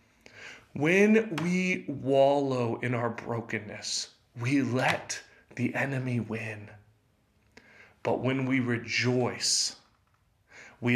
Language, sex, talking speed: English, male, 90 wpm